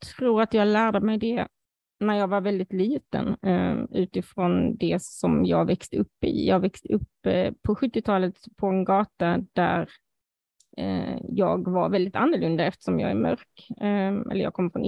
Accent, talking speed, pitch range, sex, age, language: native, 155 wpm, 185-230 Hz, female, 20-39, Swedish